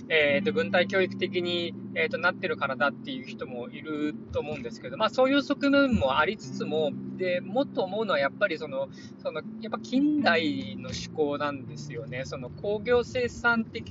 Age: 20-39